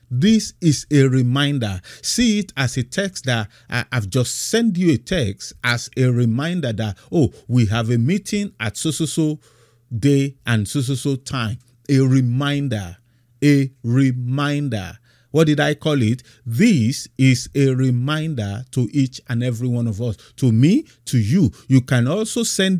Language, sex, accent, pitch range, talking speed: English, male, Nigerian, 120-155 Hz, 155 wpm